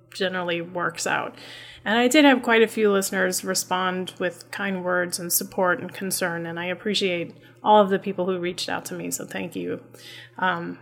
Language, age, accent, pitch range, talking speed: English, 20-39, American, 175-215 Hz, 195 wpm